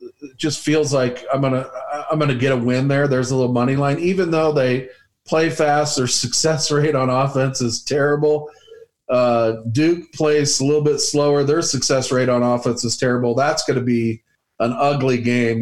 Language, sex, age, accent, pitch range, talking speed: English, male, 40-59, American, 120-140 Hz, 190 wpm